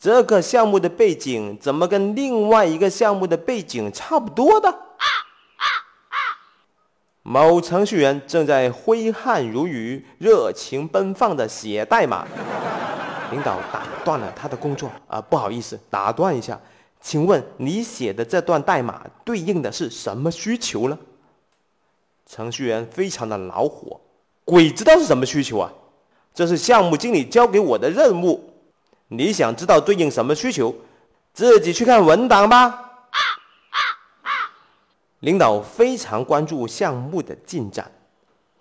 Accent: native